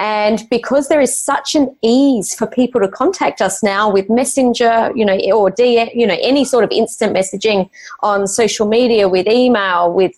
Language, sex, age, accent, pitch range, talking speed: English, female, 30-49, Australian, 195-235 Hz, 190 wpm